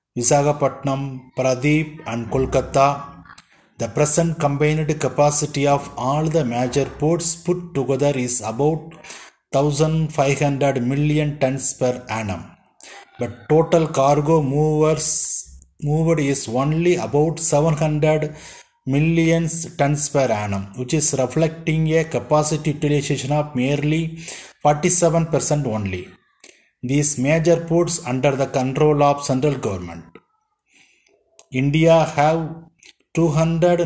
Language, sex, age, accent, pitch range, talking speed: English, male, 30-49, Indian, 130-160 Hz, 100 wpm